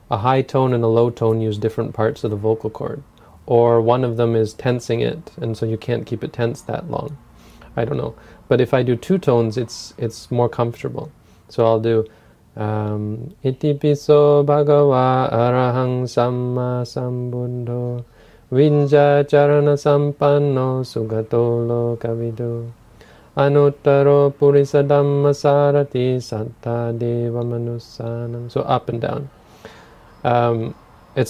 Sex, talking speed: male, 125 wpm